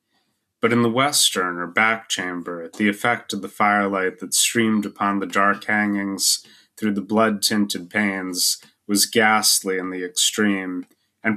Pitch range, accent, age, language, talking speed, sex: 100-110 Hz, American, 30-49, English, 150 wpm, male